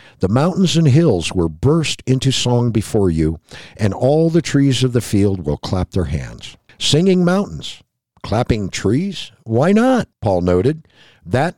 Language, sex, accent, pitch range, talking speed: English, male, American, 100-150 Hz, 155 wpm